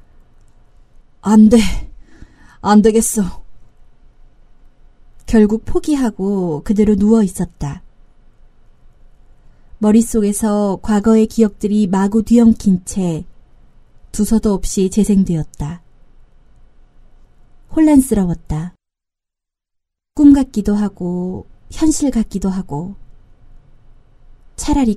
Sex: female